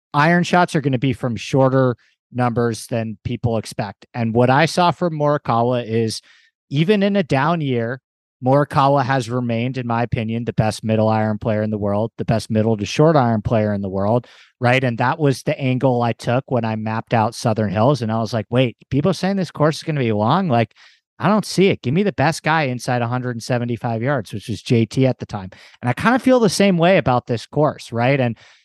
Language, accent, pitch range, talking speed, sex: English, American, 120-175 Hz, 225 wpm, male